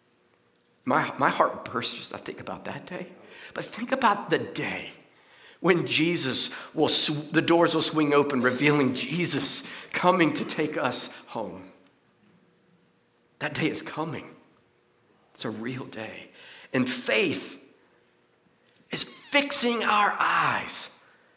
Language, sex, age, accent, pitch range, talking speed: English, male, 50-69, American, 155-195 Hz, 125 wpm